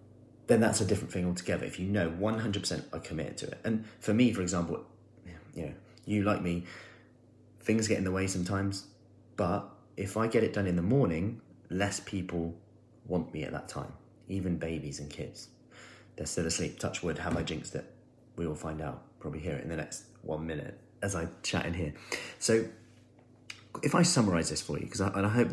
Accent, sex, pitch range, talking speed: British, male, 85-115 Hz, 205 wpm